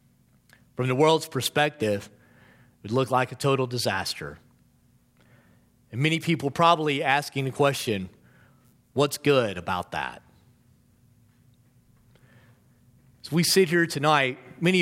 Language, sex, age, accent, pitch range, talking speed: English, male, 40-59, American, 125-170 Hz, 115 wpm